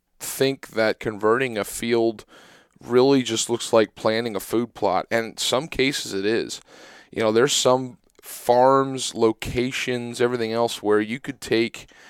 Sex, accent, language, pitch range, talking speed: male, American, English, 110-130 Hz, 155 wpm